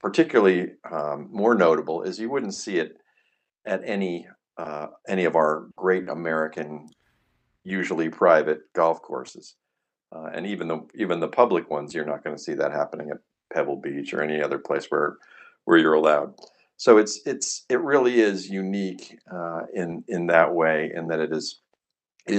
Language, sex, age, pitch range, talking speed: English, male, 50-69, 85-105 Hz, 170 wpm